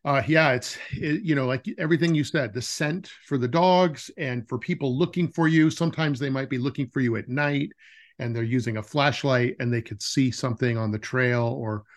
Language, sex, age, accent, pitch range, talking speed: English, male, 40-59, American, 120-150 Hz, 215 wpm